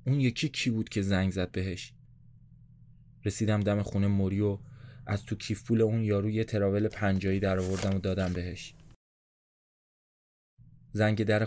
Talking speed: 140 wpm